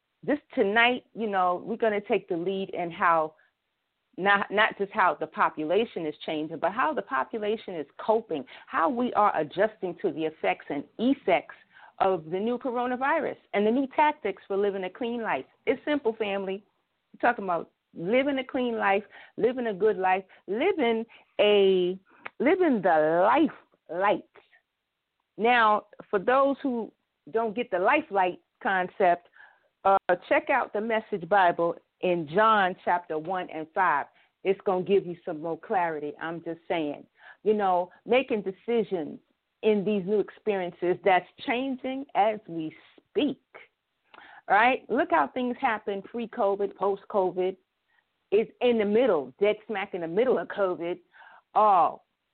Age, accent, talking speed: 40-59, American, 150 wpm